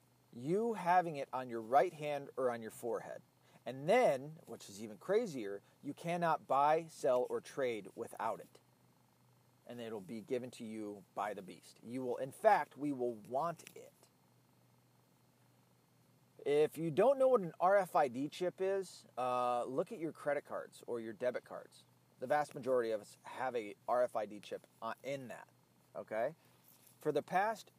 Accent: American